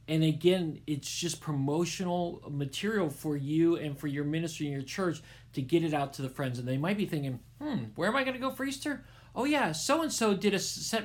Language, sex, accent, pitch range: English, male, American, 140-190 Hz